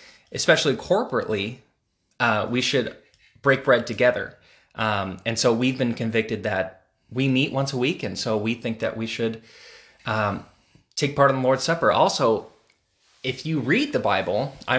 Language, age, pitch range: English, 20-39, 110-130 Hz